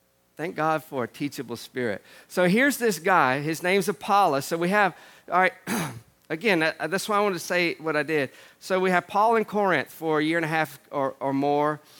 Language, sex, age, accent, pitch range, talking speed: English, male, 50-69, American, 160-210 Hz, 215 wpm